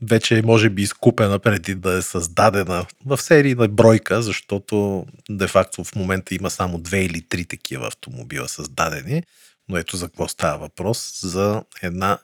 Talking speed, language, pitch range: 160 wpm, Bulgarian, 90-115 Hz